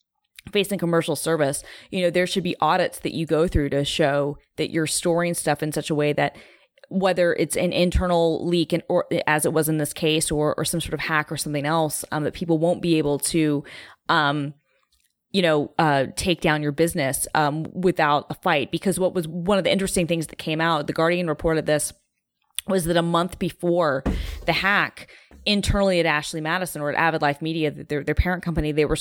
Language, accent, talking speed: English, American, 210 wpm